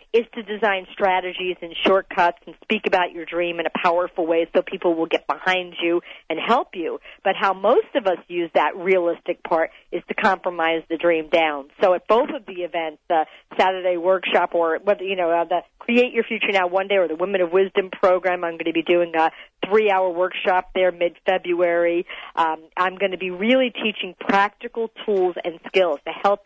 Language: English